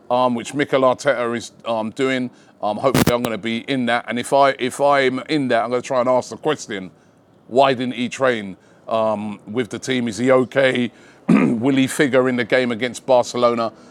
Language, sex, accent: English, male, British